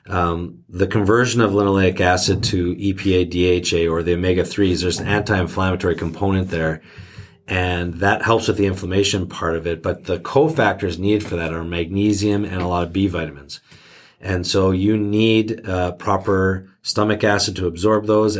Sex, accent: male, American